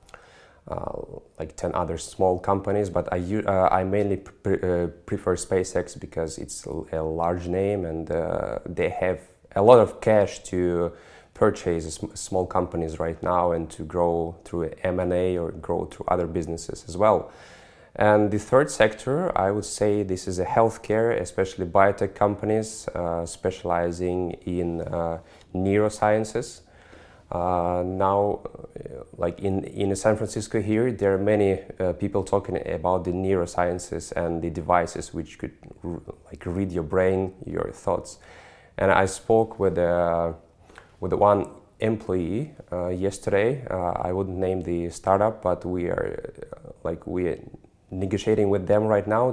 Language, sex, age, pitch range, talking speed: English, male, 20-39, 85-105 Hz, 150 wpm